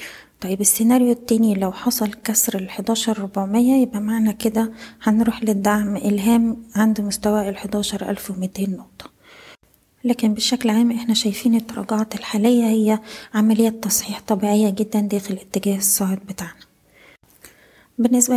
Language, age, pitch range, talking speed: Arabic, 20-39, 200-230 Hz, 120 wpm